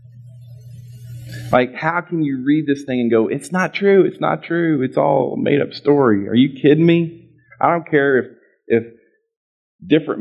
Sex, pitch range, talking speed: male, 105-140 Hz, 175 wpm